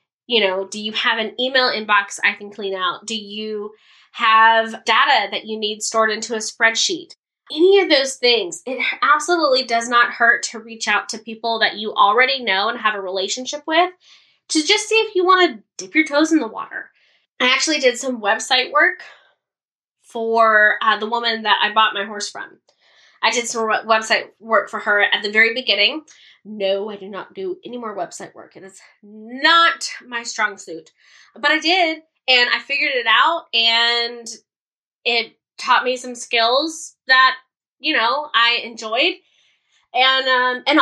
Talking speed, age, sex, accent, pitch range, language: 180 wpm, 10-29, female, American, 220-305 Hz, English